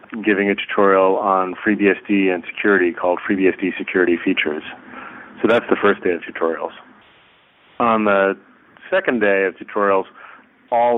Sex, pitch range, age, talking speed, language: male, 95-105 Hz, 30-49, 135 wpm, English